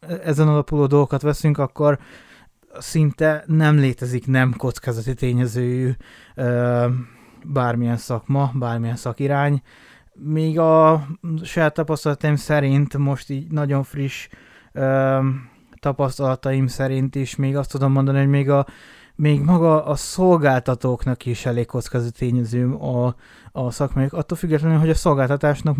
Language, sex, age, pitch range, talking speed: Hungarian, male, 20-39, 130-155 Hz, 120 wpm